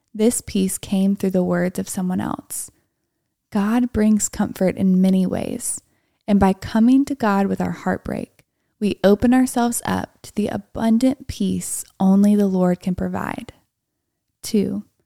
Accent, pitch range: American, 190-230 Hz